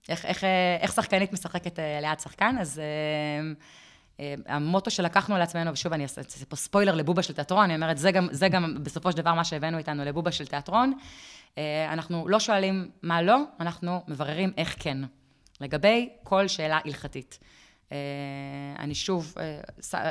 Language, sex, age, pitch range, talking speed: Hebrew, female, 20-39, 155-195 Hz, 160 wpm